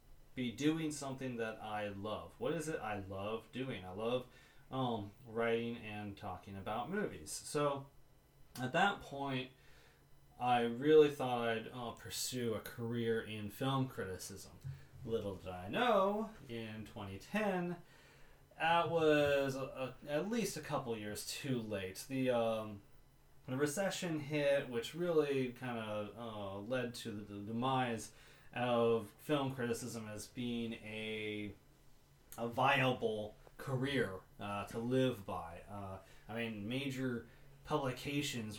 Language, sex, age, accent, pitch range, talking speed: English, male, 30-49, American, 110-140 Hz, 130 wpm